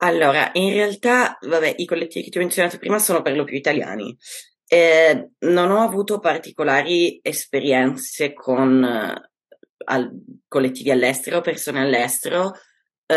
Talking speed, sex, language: 130 wpm, female, Italian